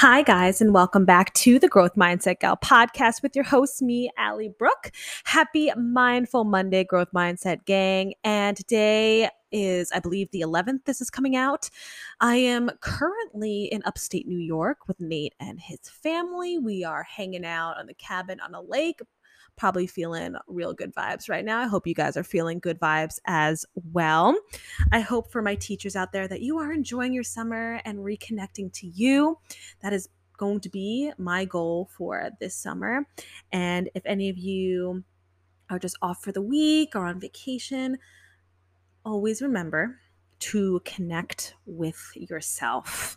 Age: 20-39